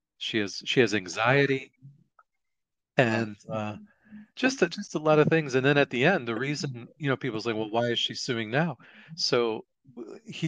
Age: 40-59